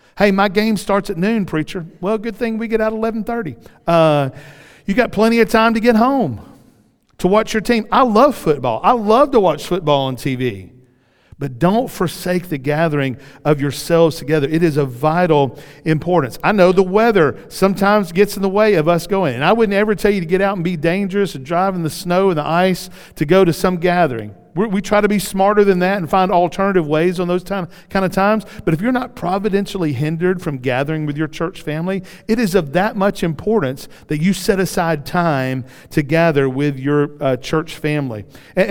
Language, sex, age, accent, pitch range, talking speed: English, male, 50-69, American, 150-200 Hz, 210 wpm